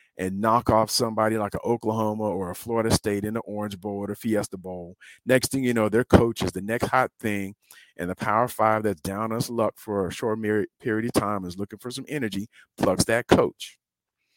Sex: male